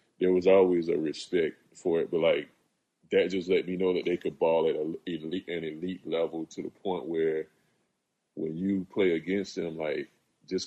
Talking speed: 185 wpm